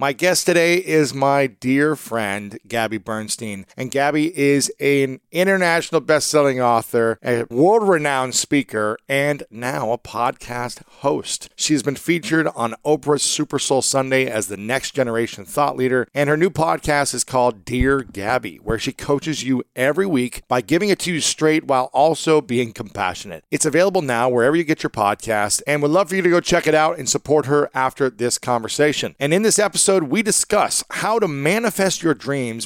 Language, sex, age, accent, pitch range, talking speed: English, male, 40-59, American, 120-155 Hz, 180 wpm